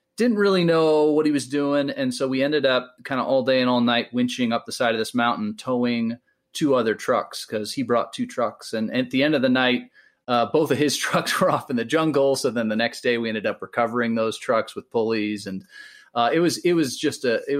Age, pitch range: 30-49, 115-150 Hz